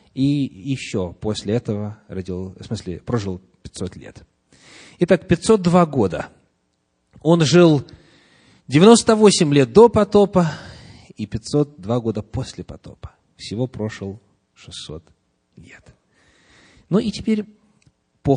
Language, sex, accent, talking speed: Russian, male, native, 95 wpm